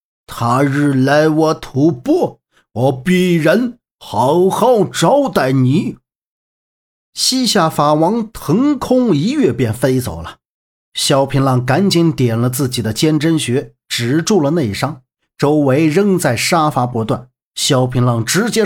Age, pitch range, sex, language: 50-69, 125-170 Hz, male, Chinese